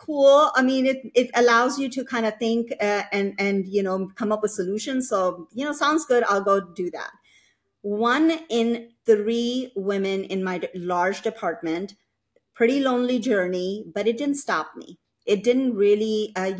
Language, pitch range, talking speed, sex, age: English, 190-245 Hz, 175 wpm, female, 40-59